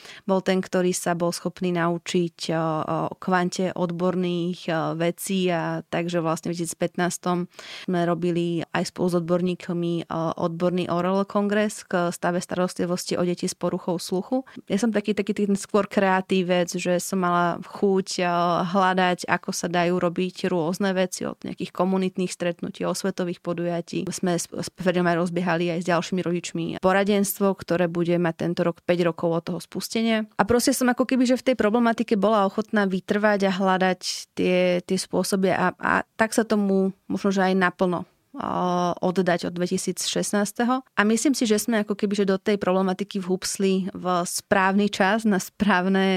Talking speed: 165 wpm